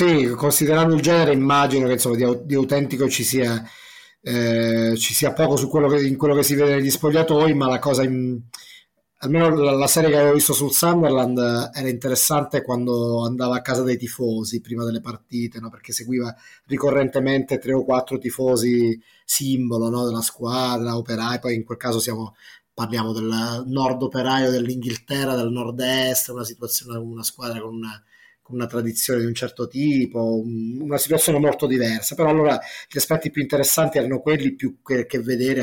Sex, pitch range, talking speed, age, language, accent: male, 115-135 Hz, 170 wpm, 30-49, Italian, native